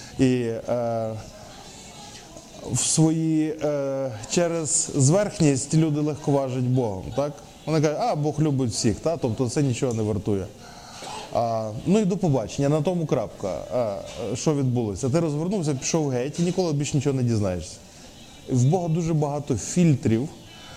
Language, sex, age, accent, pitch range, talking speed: Ukrainian, male, 20-39, native, 125-160 Hz, 145 wpm